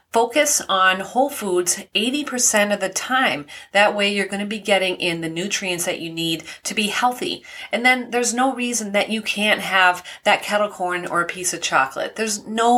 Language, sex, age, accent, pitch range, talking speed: English, female, 30-49, American, 180-230 Hz, 200 wpm